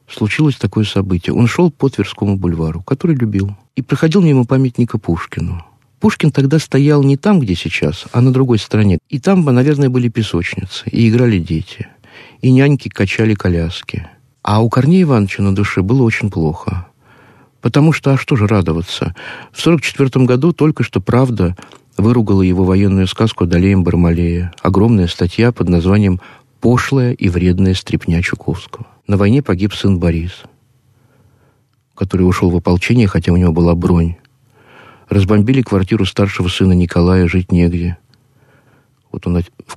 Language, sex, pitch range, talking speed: Russian, male, 90-125 Hz, 150 wpm